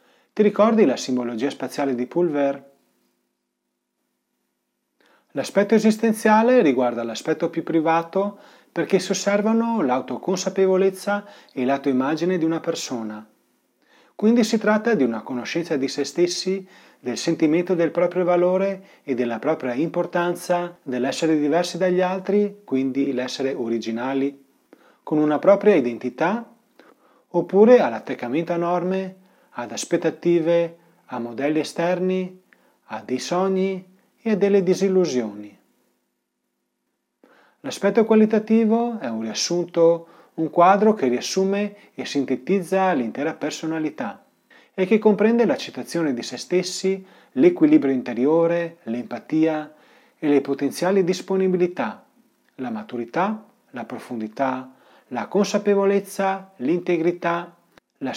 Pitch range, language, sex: 140-195 Hz, Italian, male